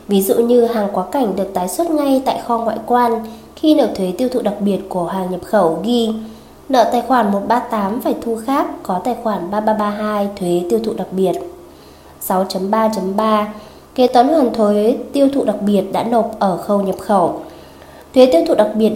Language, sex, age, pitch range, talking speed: Vietnamese, female, 20-39, 190-240 Hz, 195 wpm